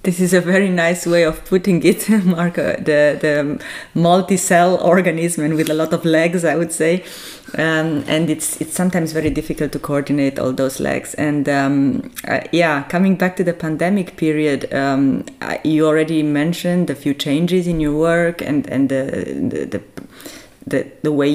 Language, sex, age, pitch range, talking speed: English, female, 20-39, 150-175 Hz, 175 wpm